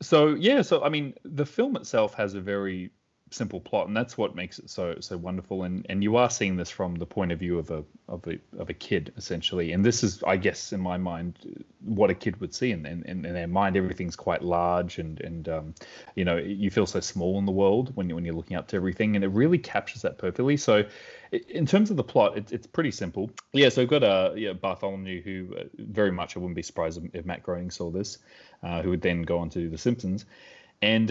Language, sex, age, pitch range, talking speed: English, male, 30-49, 85-110 Hz, 250 wpm